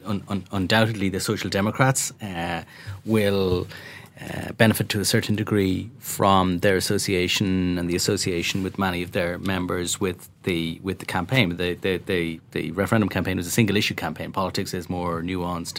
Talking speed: 165 wpm